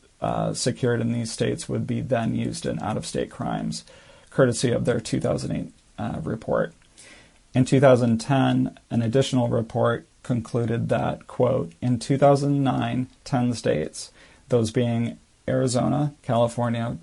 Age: 40-59